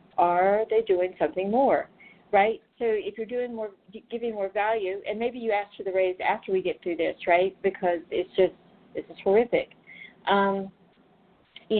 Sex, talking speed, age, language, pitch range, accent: female, 175 wpm, 50-69, English, 175-210 Hz, American